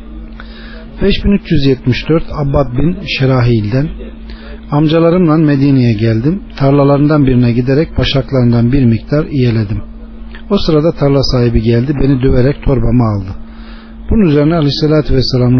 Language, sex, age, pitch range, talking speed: Turkish, male, 40-59, 120-155 Hz, 105 wpm